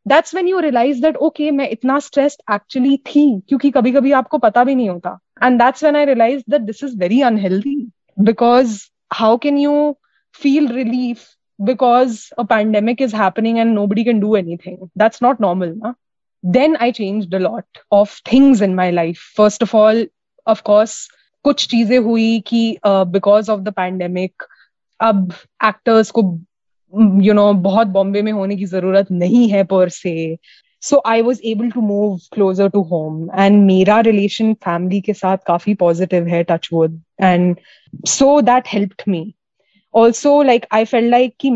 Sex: female